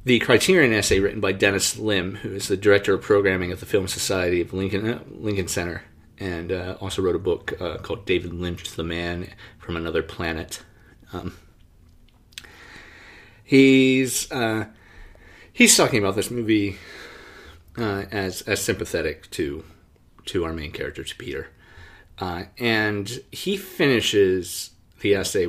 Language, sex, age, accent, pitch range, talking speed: English, male, 30-49, American, 90-115 Hz, 145 wpm